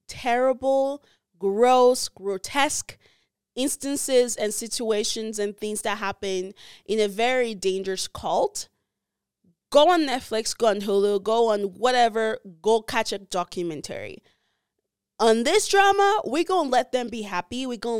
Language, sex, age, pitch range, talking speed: English, female, 20-39, 215-280 Hz, 135 wpm